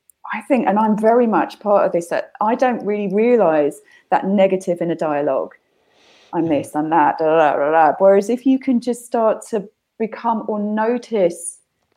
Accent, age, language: British, 20-39, English